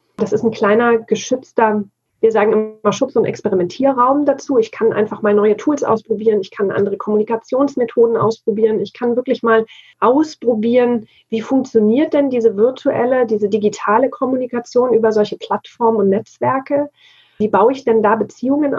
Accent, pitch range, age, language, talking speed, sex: German, 215-250 Hz, 30-49, German, 155 wpm, female